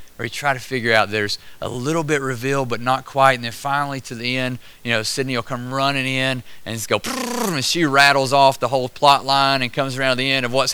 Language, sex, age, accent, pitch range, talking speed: English, male, 30-49, American, 100-135 Hz, 255 wpm